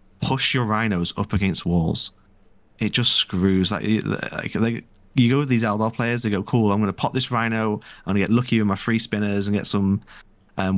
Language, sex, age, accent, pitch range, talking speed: English, male, 30-49, British, 95-115 Hz, 225 wpm